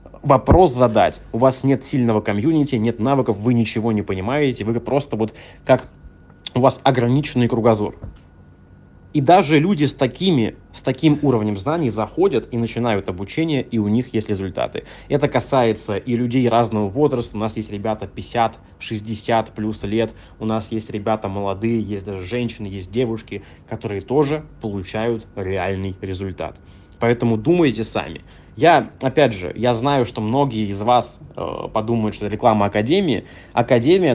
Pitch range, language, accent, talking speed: 105-130 Hz, Russian, native, 150 wpm